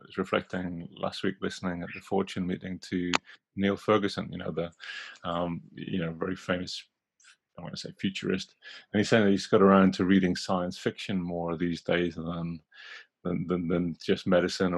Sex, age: male, 30-49